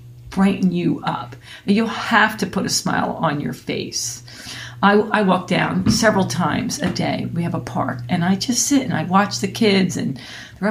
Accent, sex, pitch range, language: American, female, 130-205 Hz, English